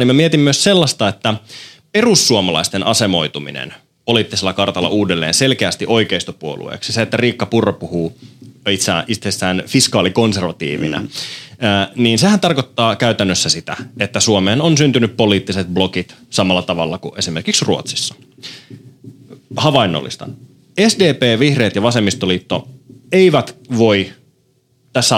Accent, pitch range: native, 95-130 Hz